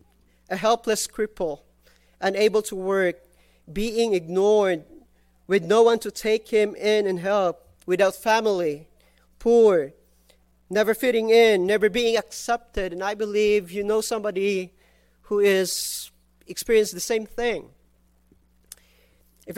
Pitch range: 175-225 Hz